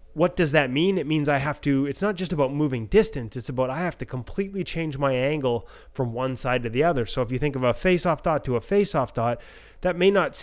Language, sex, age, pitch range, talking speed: English, male, 20-39, 120-155 Hz, 260 wpm